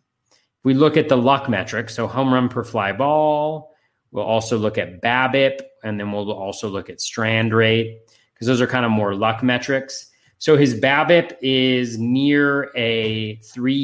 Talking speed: 175 wpm